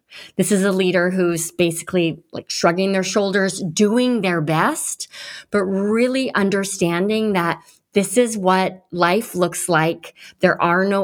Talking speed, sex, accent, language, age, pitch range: 140 wpm, female, American, English, 30-49, 165-205 Hz